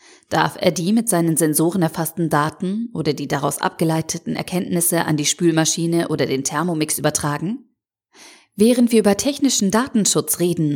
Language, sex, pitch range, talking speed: German, female, 160-215 Hz, 145 wpm